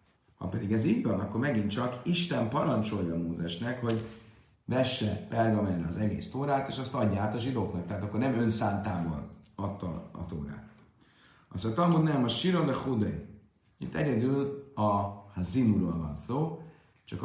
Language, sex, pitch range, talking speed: Hungarian, male, 95-120 Hz, 165 wpm